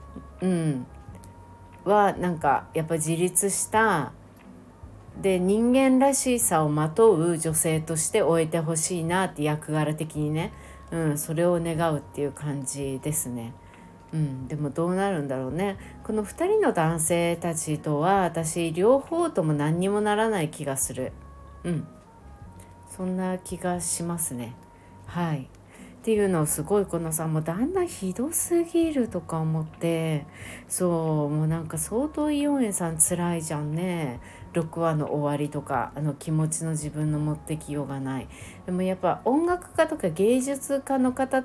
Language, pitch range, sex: Japanese, 150-195 Hz, female